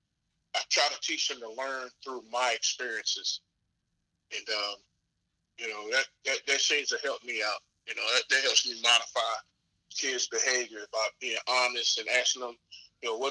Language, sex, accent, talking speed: English, male, American, 180 wpm